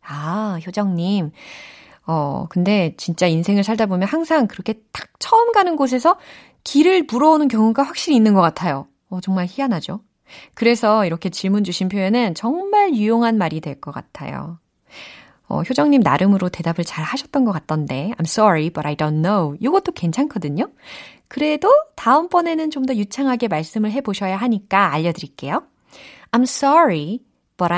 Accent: native